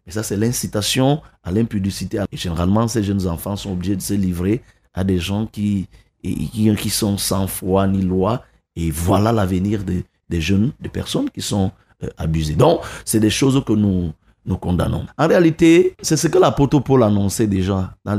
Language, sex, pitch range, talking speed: French, male, 95-130 Hz, 180 wpm